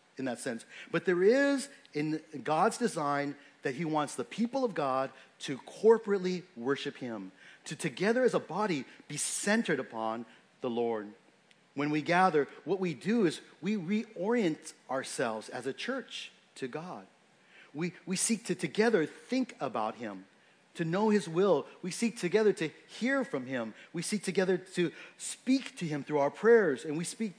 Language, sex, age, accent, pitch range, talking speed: English, male, 40-59, American, 140-215 Hz, 170 wpm